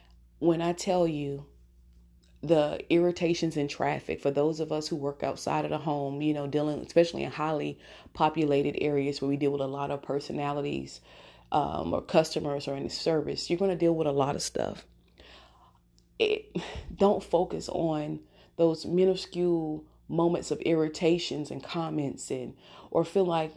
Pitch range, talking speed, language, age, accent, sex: 140-165 Hz, 160 wpm, English, 30-49, American, female